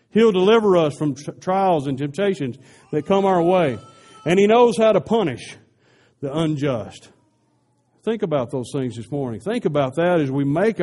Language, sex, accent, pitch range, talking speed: English, male, American, 130-185 Hz, 170 wpm